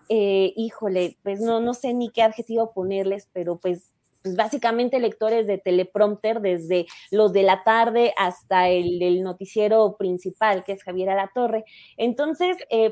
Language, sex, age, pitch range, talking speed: Spanish, female, 20-39, 200-240 Hz, 155 wpm